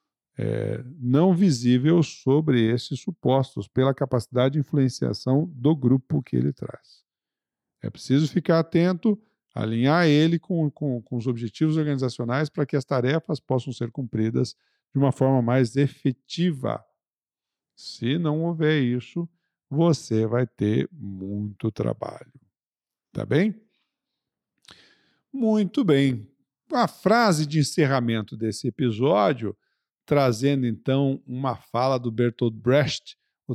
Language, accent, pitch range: Portuguese, Brazilian, 120-150 Hz